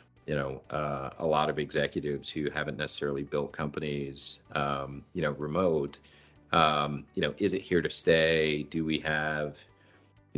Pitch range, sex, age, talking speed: 75-90 Hz, male, 40-59, 160 wpm